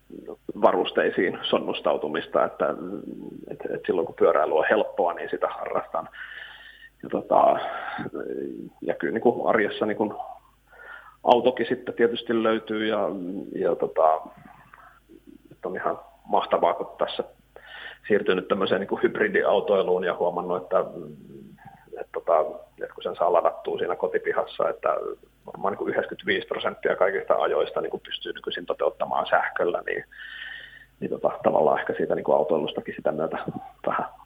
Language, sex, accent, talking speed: Finnish, male, native, 120 wpm